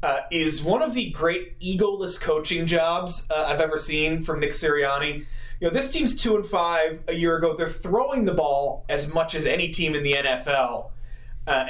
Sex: male